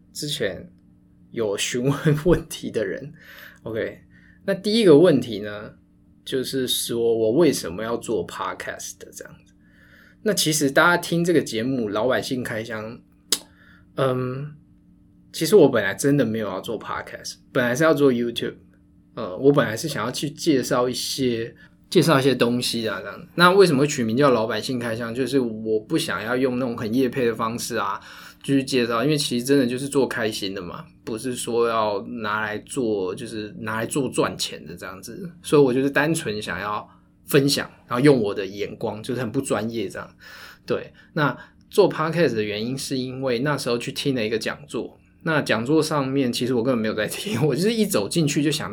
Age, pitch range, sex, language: 20-39, 115-145 Hz, male, Chinese